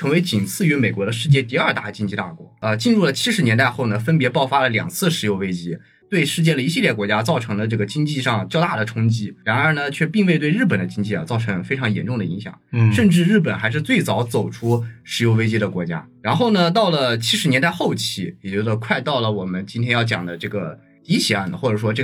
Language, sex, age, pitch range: Chinese, male, 20-39, 105-150 Hz